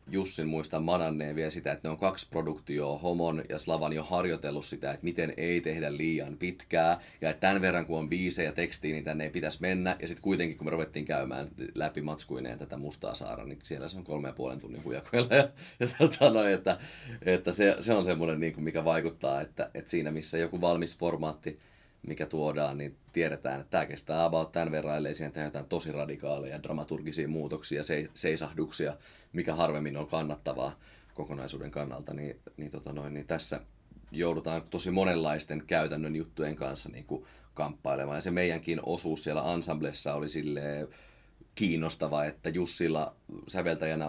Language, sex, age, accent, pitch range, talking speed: Finnish, male, 30-49, native, 75-85 Hz, 175 wpm